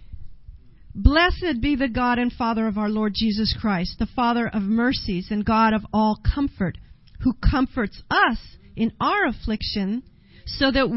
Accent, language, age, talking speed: American, English, 40-59, 155 wpm